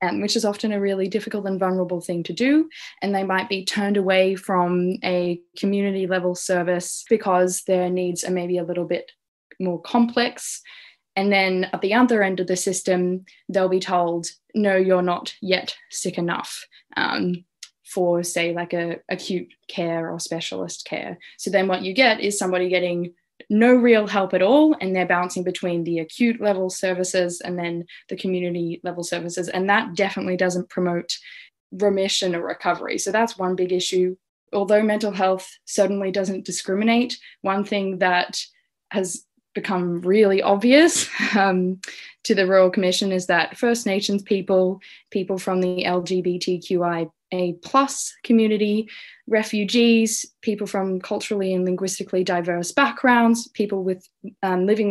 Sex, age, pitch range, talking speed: female, 10-29, 180-215 Hz, 150 wpm